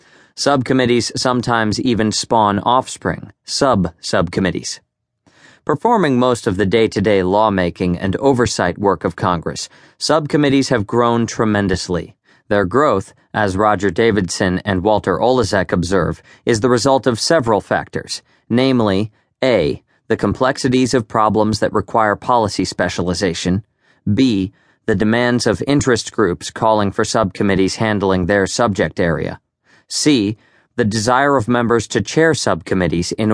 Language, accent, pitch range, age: English, American, 100-120 Hz, 40-59